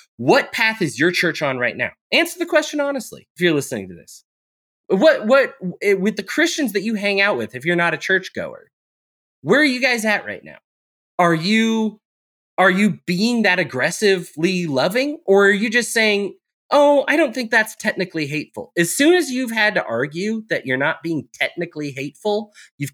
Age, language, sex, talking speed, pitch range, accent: 30-49, English, male, 190 wpm, 140-215 Hz, American